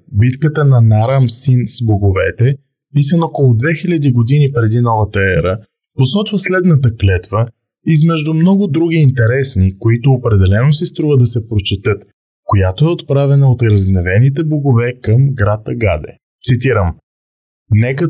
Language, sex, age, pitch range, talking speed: Bulgarian, male, 20-39, 110-140 Hz, 125 wpm